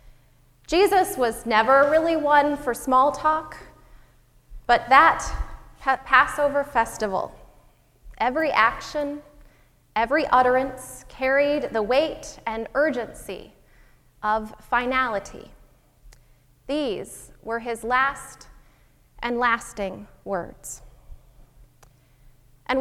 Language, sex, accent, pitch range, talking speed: English, female, American, 185-280 Hz, 80 wpm